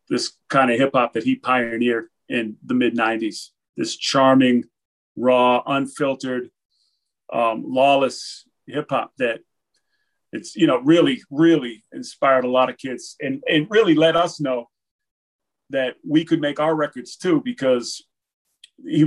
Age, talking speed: 40-59, 140 wpm